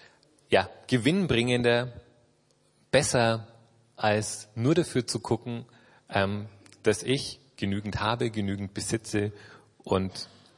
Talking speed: 90 wpm